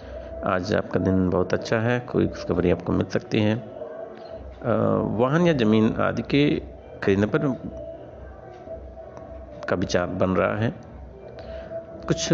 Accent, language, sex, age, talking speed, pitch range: native, Hindi, male, 60-79, 120 wpm, 95-145 Hz